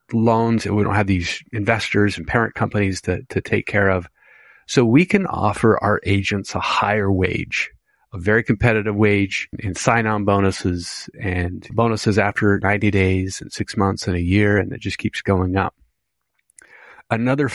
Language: English